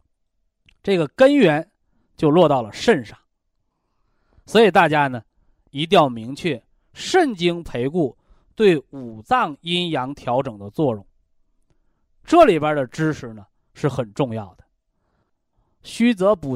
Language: Chinese